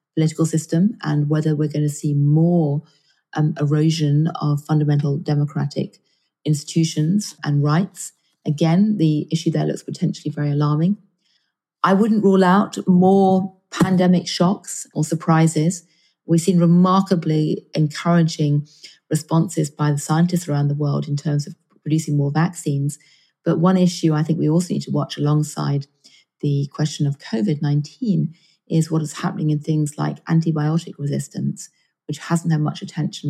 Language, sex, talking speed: English, female, 145 wpm